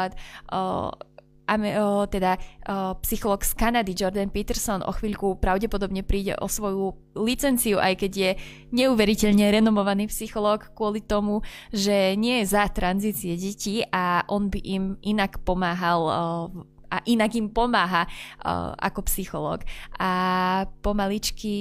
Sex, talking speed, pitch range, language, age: female, 120 wpm, 185-210 Hz, Slovak, 20-39